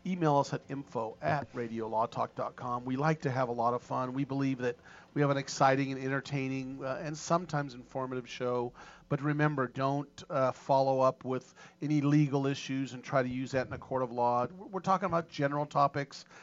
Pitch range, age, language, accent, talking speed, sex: 130-150 Hz, 40-59, English, American, 195 wpm, male